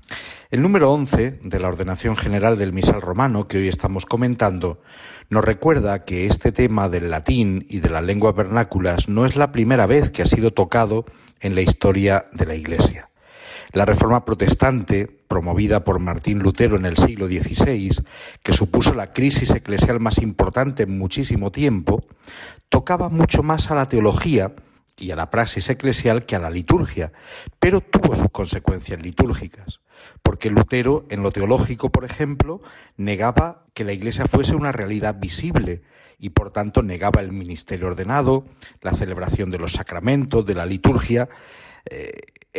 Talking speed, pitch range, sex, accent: 160 wpm, 95-120 Hz, male, Spanish